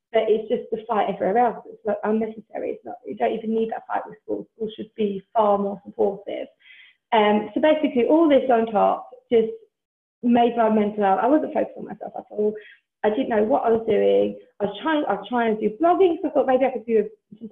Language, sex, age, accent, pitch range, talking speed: English, female, 20-39, British, 210-255 Hz, 235 wpm